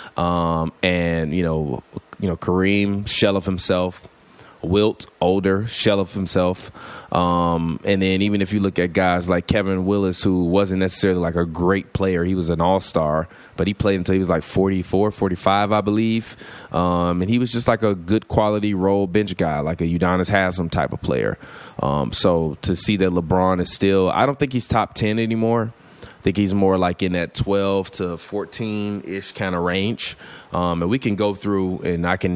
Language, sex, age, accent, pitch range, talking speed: English, male, 20-39, American, 90-105 Hz, 195 wpm